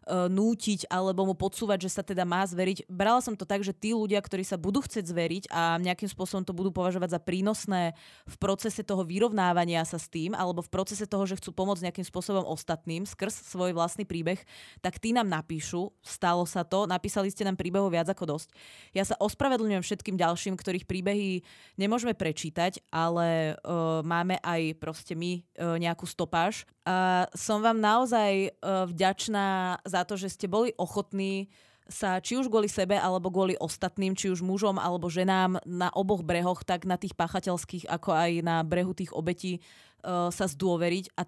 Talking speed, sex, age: 180 wpm, female, 20-39